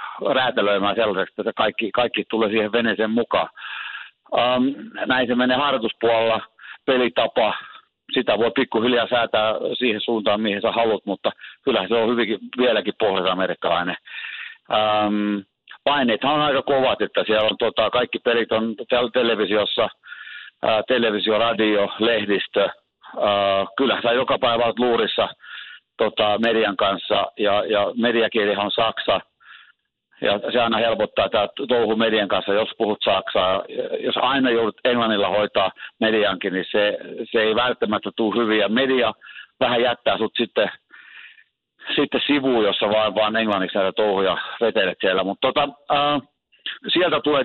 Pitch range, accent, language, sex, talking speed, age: 105-125 Hz, native, Finnish, male, 125 wpm, 50-69